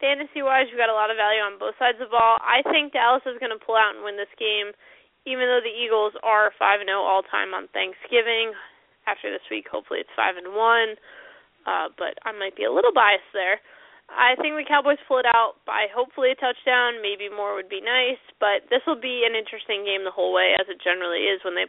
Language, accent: English, American